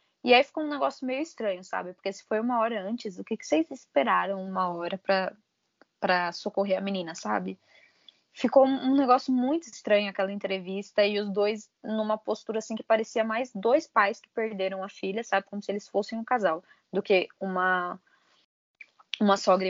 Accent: Brazilian